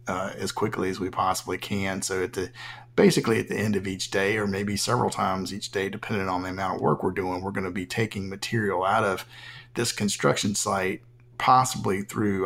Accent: American